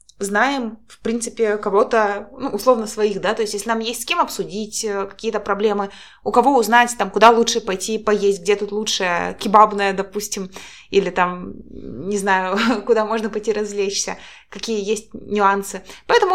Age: 20-39